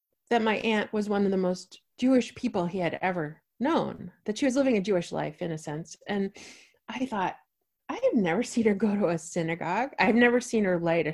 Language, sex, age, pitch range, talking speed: English, female, 30-49, 180-240 Hz, 225 wpm